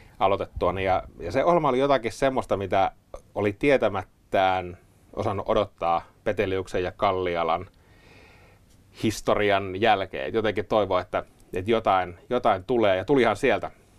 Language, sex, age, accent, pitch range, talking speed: Finnish, male, 30-49, native, 95-110 Hz, 120 wpm